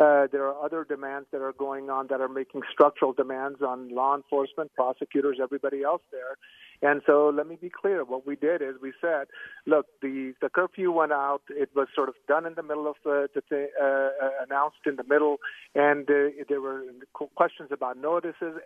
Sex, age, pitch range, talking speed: male, 50-69, 140-165 Hz, 200 wpm